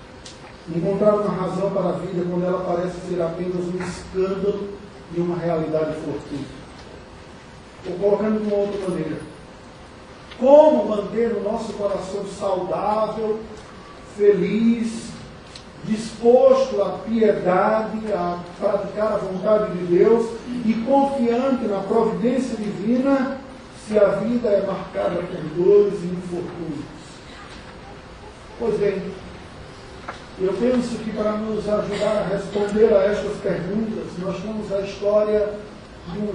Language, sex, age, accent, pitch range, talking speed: Portuguese, male, 40-59, Brazilian, 180-215 Hz, 120 wpm